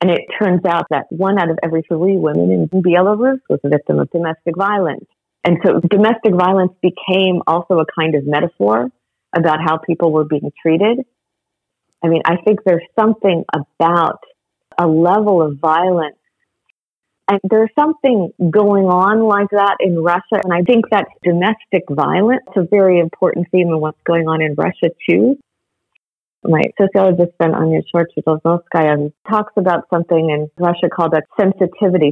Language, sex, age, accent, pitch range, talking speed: English, female, 50-69, American, 155-190 Hz, 160 wpm